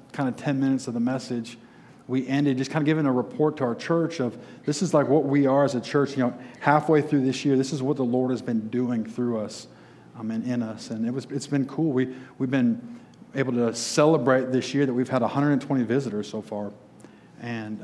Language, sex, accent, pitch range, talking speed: English, male, American, 120-145 Hz, 235 wpm